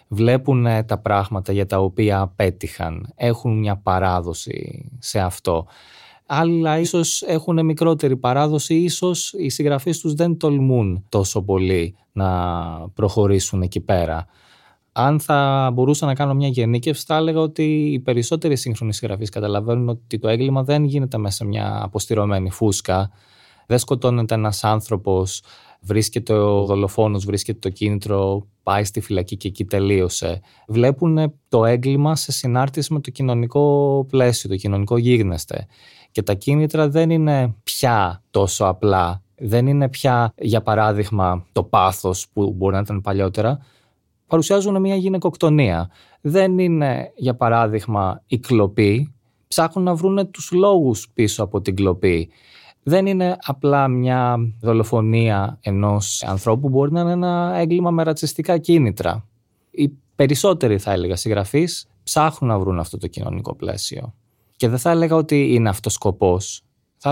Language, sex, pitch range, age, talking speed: Greek, male, 100-145 Hz, 20-39, 140 wpm